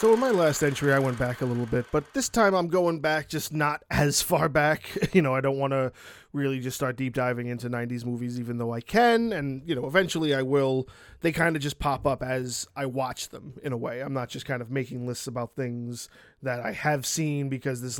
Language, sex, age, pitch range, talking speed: English, male, 20-39, 130-175 Hz, 245 wpm